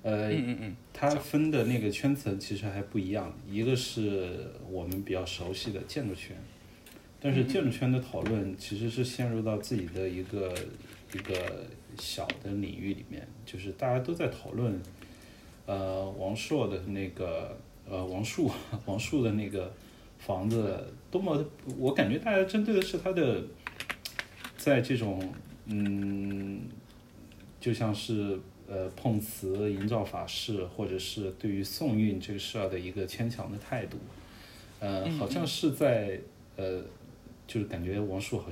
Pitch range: 95-115 Hz